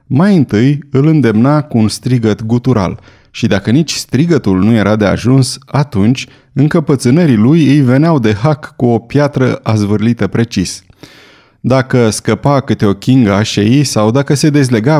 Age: 30-49